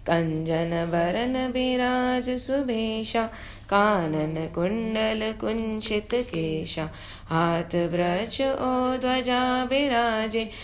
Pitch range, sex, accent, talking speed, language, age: 175-240 Hz, female, Indian, 60 wpm, English, 20-39